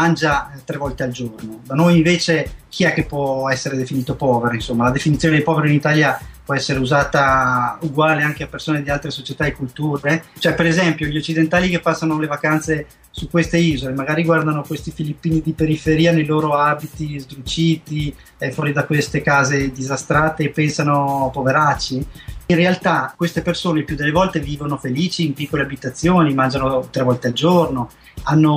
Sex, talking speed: male, 175 wpm